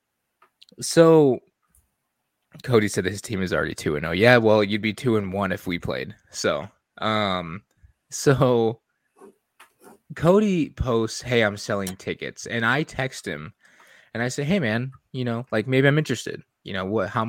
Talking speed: 165 wpm